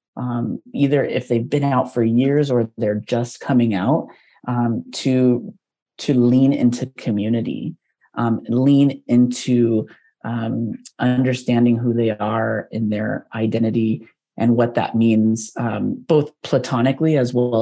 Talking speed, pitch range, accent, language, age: 135 wpm, 115-140 Hz, American, English, 30-49